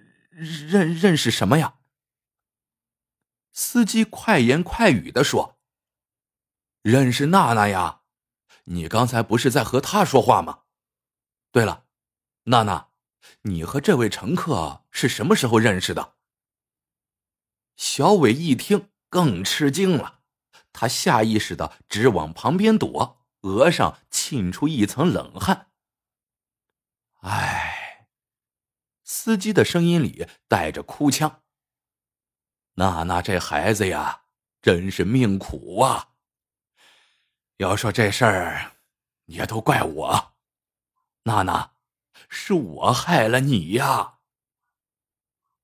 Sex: male